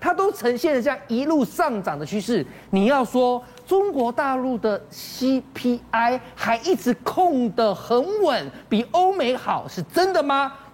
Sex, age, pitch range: male, 40-59, 205-305 Hz